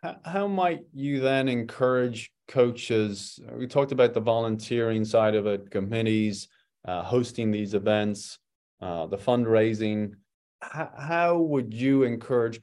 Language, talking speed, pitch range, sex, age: English, 130 wpm, 100-115 Hz, male, 30-49